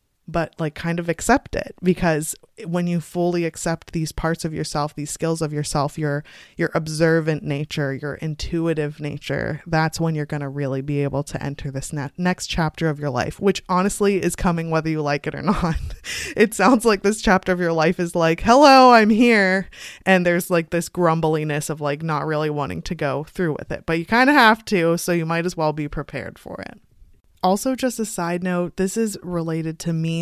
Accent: American